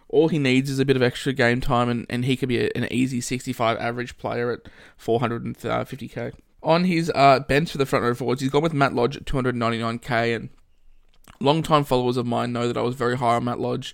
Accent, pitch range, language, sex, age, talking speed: Australian, 115-130 Hz, English, male, 20-39, 230 wpm